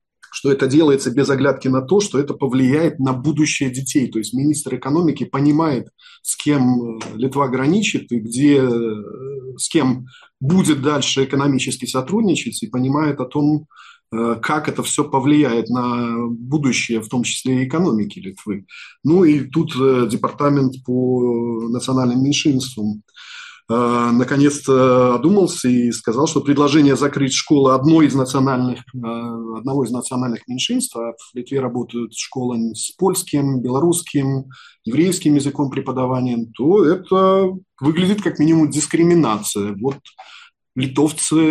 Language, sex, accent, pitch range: Russian, male, native, 120-150 Hz